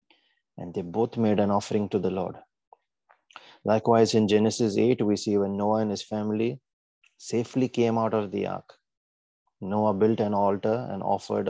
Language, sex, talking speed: English, male, 165 wpm